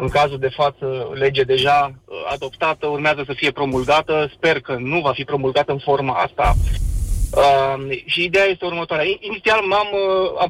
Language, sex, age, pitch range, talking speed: Romanian, male, 30-49, 135-175 Hz, 160 wpm